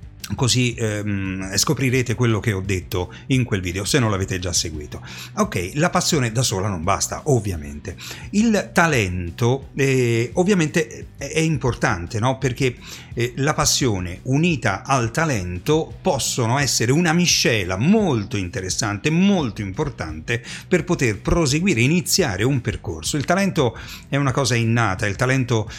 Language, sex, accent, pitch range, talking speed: Italian, male, native, 105-140 Hz, 135 wpm